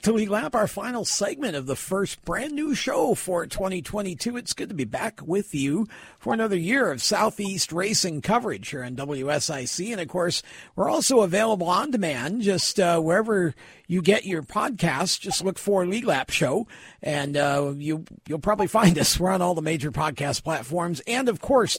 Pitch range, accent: 160-210 Hz, American